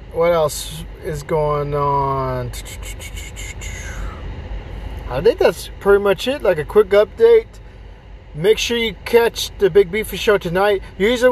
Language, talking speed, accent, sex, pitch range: English, 120 wpm, American, male, 150-210 Hz